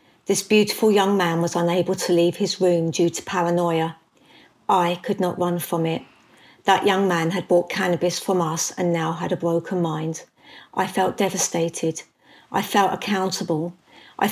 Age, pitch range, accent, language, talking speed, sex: 50-69, 170-200 Hz, British, Danish, 170 wpm, female